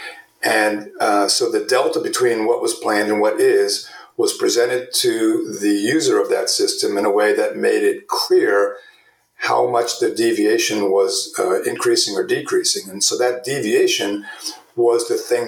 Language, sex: English, male